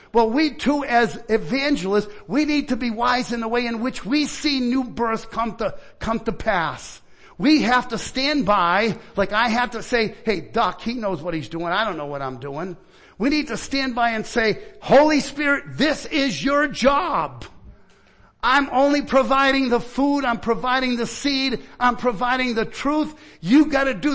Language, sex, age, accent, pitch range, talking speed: English, male, 50-69, American, 190-255 Hz, 190 wpm